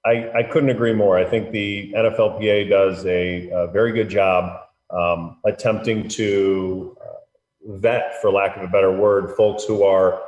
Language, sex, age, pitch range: English, male, 30-49, 100-115 Hz